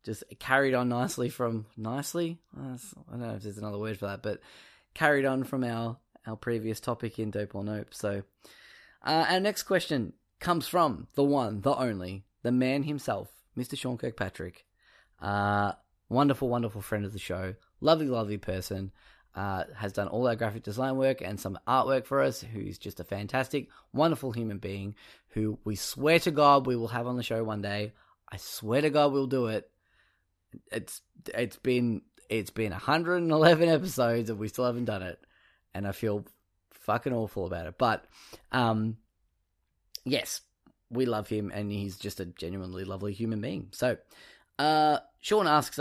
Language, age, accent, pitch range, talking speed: English, 10-29, Australian, 100-135 Hz, 175 wpm